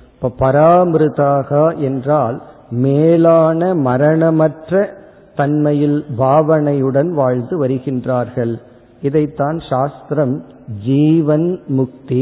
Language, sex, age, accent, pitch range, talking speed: Tamil, male, 50-69, native, 130-160 Hz, 50 wpm